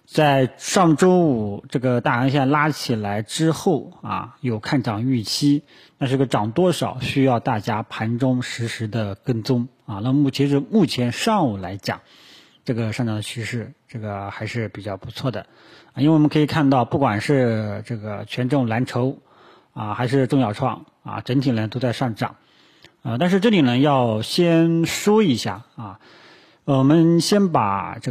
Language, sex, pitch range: Chinese, male, 115-150 Hz